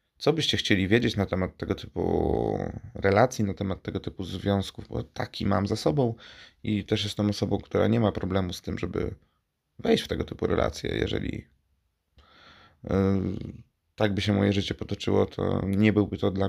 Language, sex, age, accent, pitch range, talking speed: Polish, male, 30-49, native, 95-110 Hz, 170 wpm